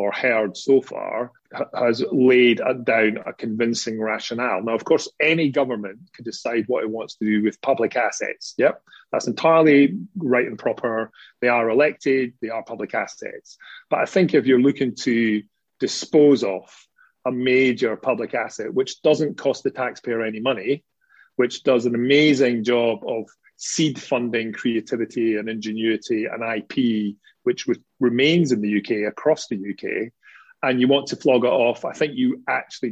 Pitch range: 115-165 Hz